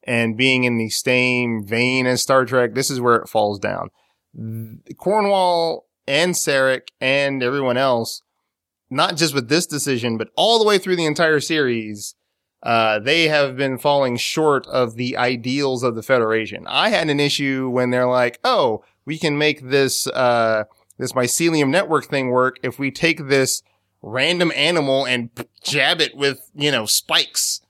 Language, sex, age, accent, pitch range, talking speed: English, male, 30-49, American, 125-175 Hz, 170 wpm